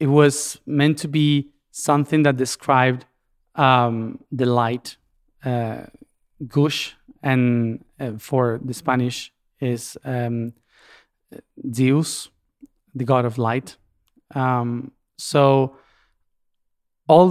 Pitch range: 125-145 Hz